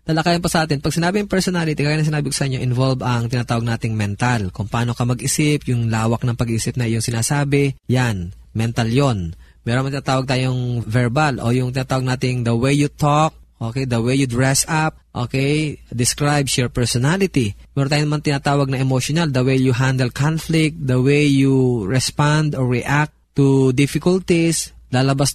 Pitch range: 125-150 Hz